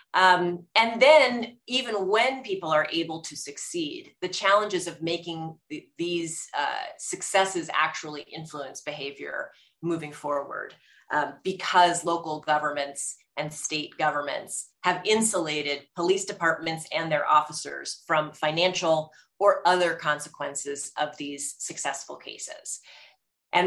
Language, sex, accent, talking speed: English, female, American, 115 wpm